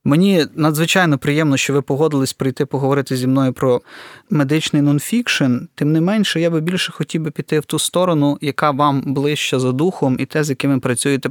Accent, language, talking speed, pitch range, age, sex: native, Ukrainian, 185 wpm, 135-155 Hz, 20-39, male